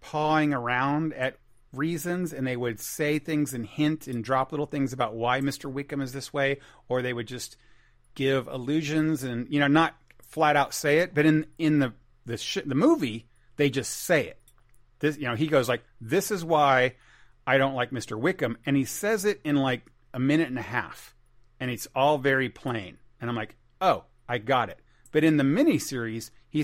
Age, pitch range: 40-59, 120-145 Hz